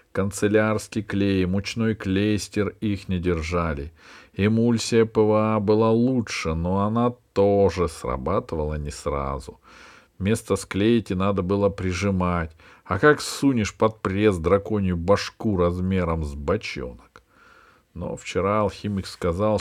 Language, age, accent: Russian, 50-69, native